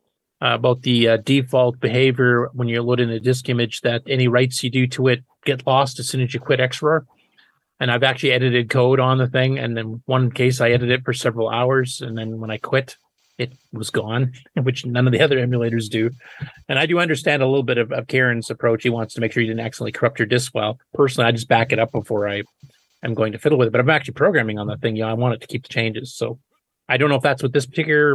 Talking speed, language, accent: 260 wpm, English, American